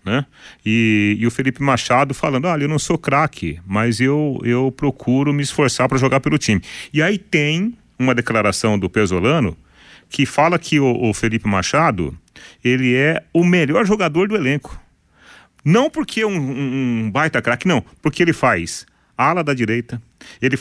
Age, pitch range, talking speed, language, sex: 40-59, 105-165 Hz, 170 wpm, Portuguese, male